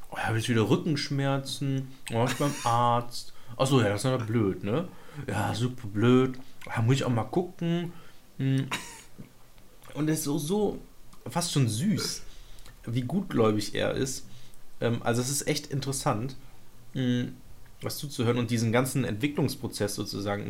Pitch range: 120-145 Hz